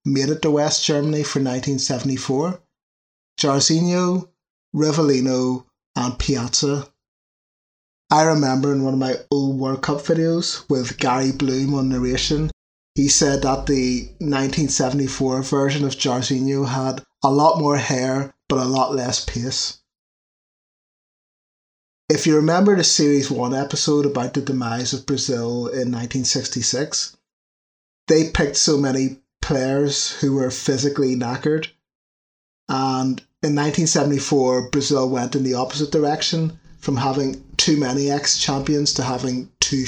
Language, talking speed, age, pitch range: English, 130 wpm, 30-49, 130-150 Hz